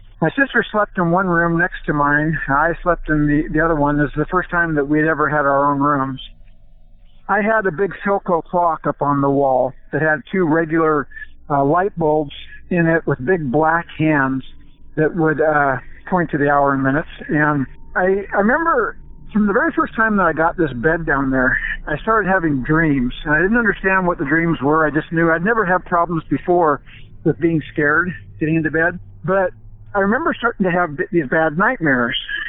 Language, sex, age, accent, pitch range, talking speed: English, male, 60-79, American, 150-185 Hz, 205 wpm